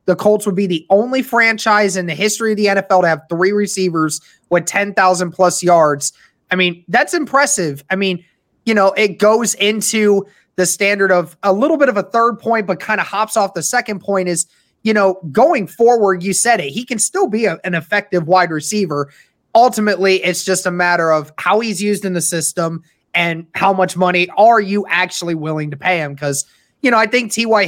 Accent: American